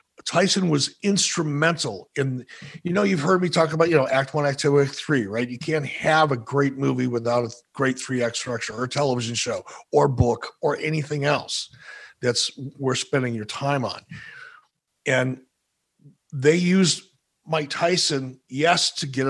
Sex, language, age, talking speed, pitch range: male, English, 50-69, 170 wpm, 130-160 Hz